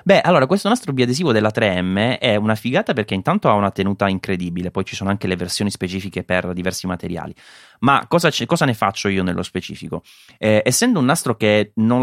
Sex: male